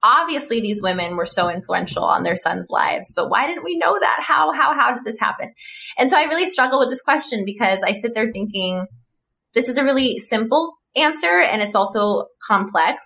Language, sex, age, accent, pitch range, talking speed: English, female, 20-39, American, 180-235 Hz, 205 wpm